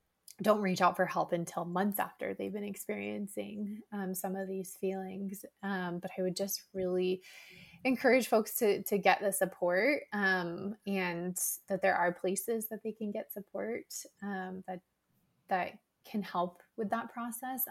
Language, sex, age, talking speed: English, female, 20-39, 165 wpm